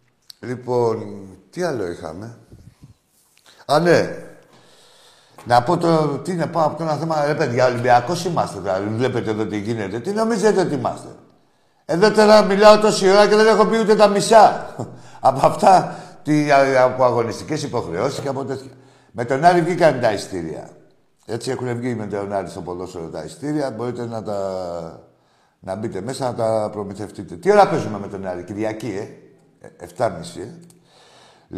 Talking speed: 160 wpm